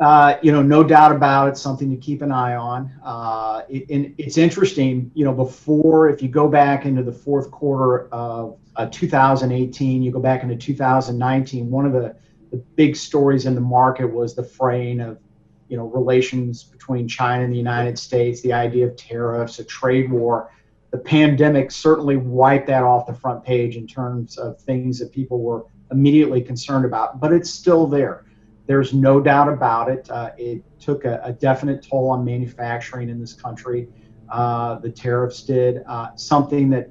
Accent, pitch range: American, 120-140 Hz